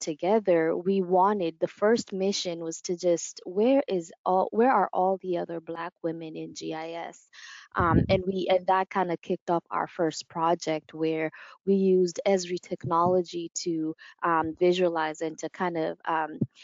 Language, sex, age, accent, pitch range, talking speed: English, female, 20-39, American, 165-185 Hz, 165 wpm